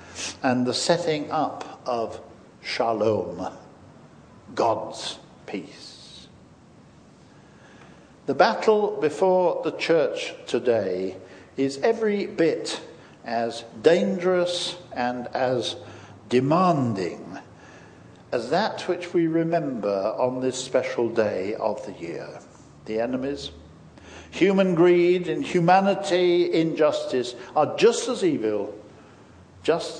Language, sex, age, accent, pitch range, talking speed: English, male, 60-79, British, 120-180 Hz, 90 wpm